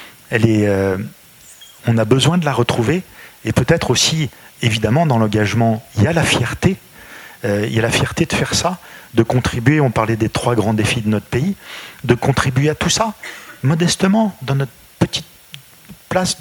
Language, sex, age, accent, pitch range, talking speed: French, male, 40-59, French, 105-140 Hz, 170 wpm